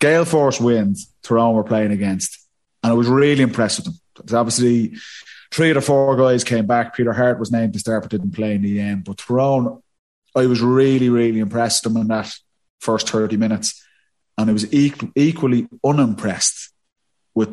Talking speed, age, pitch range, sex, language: 185 wpm, 30-49, 110-125 Hz, male, English